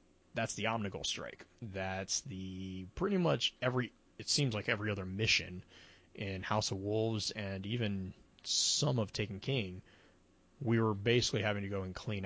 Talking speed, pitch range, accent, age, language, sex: 160 wpm, 95-115 Hz, American, 20-39, English, male